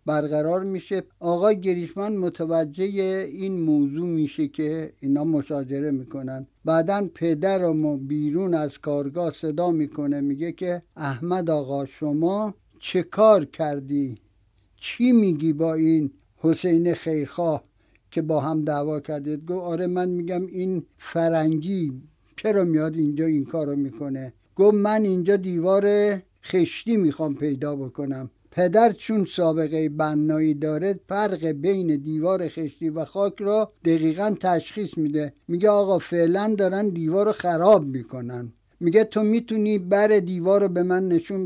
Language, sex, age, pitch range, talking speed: Persian, male, 60-79, 150-190 Hz, 125 wpm